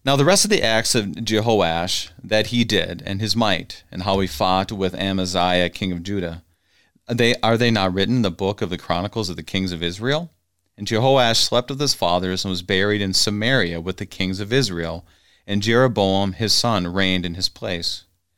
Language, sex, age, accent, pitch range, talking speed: English, male, 40-59, American, 95-115 Hz, 205 wpm